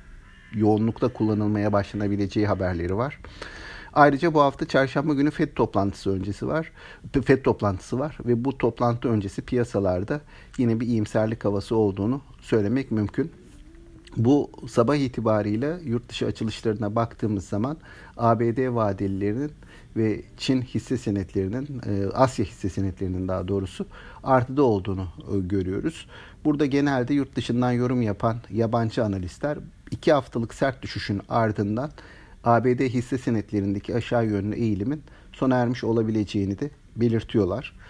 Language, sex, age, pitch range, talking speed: Turkish, male, 50-69, 105-135 Hz, 120 wpm